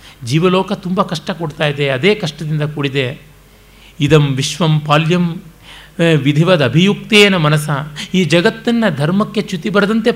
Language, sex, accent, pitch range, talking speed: Kannada, male, native, 145-205 Hz, 105 wpm